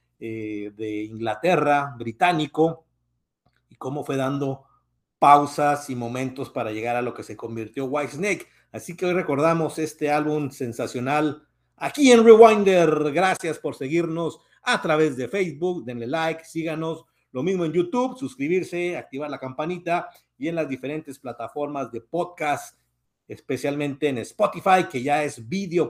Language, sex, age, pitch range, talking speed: Spanish, male, 50-69, 130-170 Hz, 140 wpm